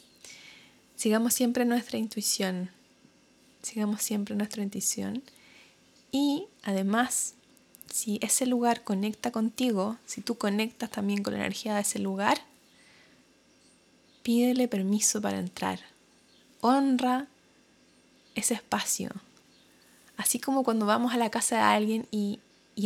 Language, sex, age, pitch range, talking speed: Spanish, female, 20-39, 200-240 Hz, 115 wpm